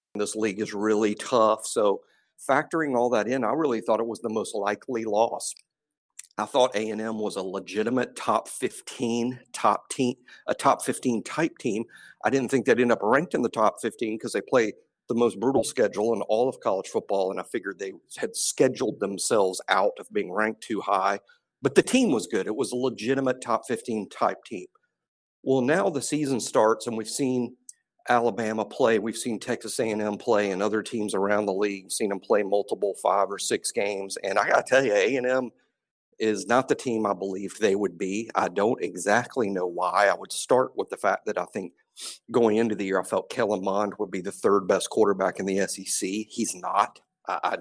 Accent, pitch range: American, 105-135 Hz